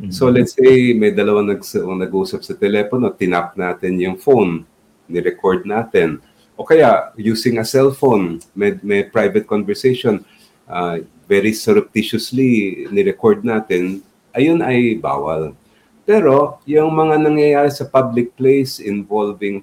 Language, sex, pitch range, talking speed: English, male, 100-135 Hz, 120 wpm